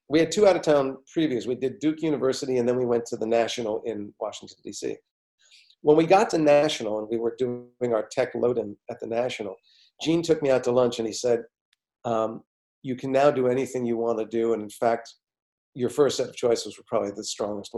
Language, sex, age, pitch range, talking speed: English, male, 50-69, 135-220 Hz, 225 wpm